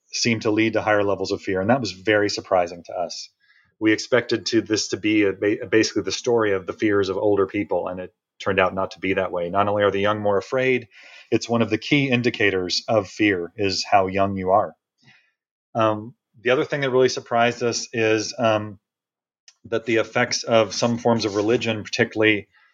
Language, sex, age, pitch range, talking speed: English, male, 30-49, 105-120 Hz, 205 wpm